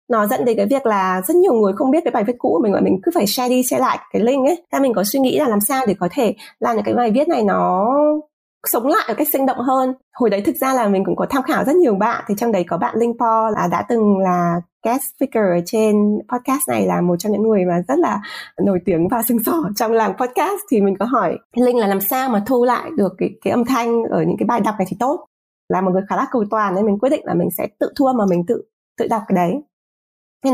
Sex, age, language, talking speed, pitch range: female, 20-39, Vietnamese, 290 wpm, 200-265 Hz